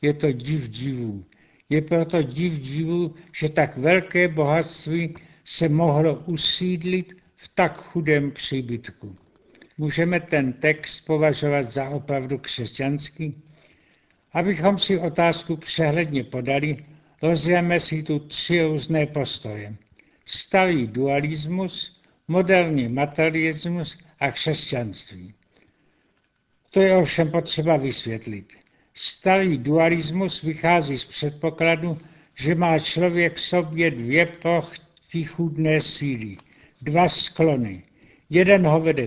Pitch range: 140-170 Hz